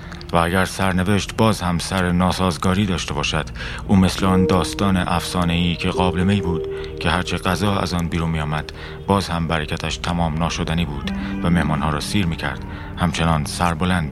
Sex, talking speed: male, 155 wpm